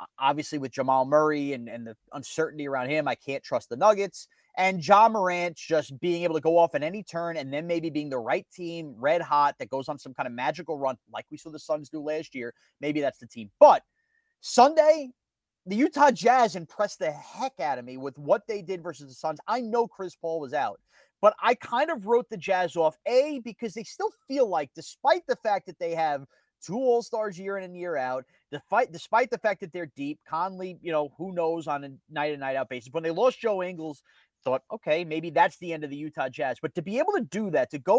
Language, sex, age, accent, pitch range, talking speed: English, male, 30-49, American, 150-230 Hz, 240 wpm